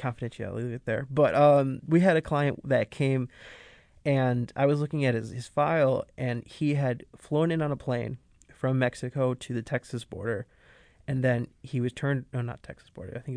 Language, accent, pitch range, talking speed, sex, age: English, American, 120-140 Hz, 195 wpm, male, 20-39